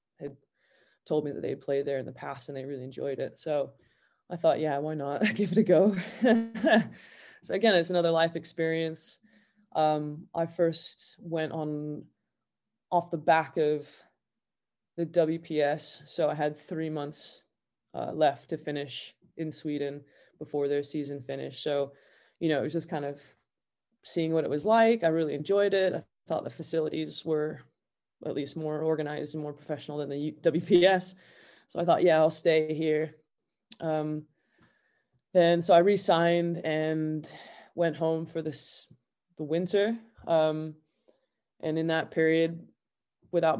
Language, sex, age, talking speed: English, female, 20-39, 155 wpm